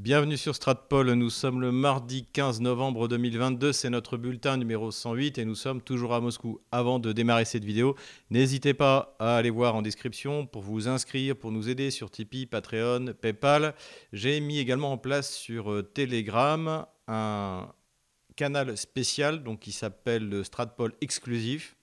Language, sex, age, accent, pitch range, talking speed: French, male, 40-59, French, 115-140 Hz, 160 wpm